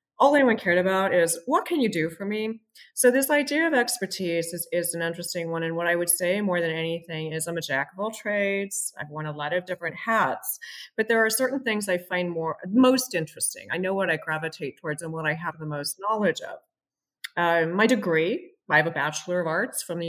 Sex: female